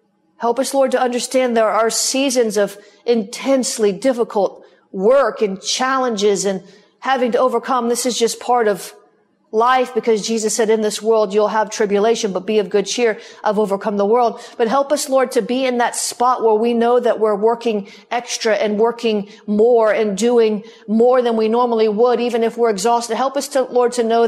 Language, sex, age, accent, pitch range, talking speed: English, female, 40-59, American, 215-255 Hz, 190 wpm